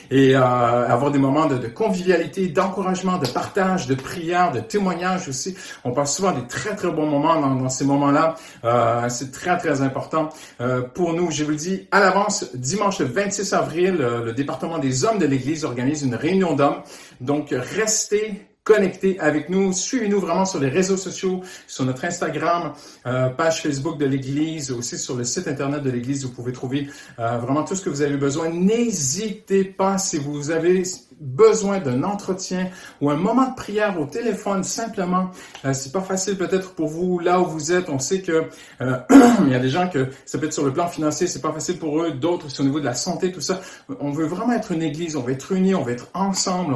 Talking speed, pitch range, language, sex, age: 210 wpm, 140-185 Hz, French, male, 50-69